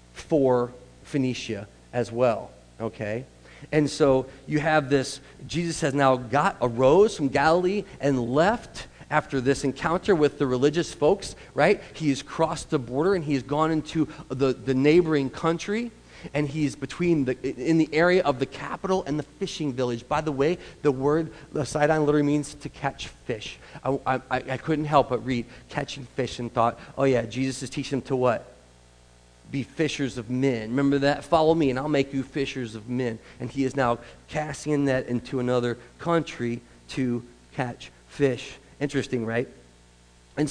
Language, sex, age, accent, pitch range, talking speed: English, male, 40-59, American, 125-150 Hz, 170 wpm